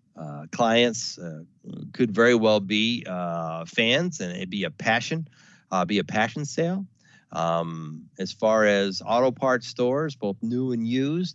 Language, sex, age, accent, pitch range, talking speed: English, male, 40-59, American, 95-120 Hz, 160 wpm